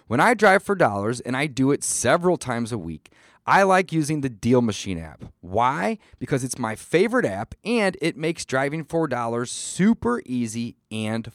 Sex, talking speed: male, 185 wpm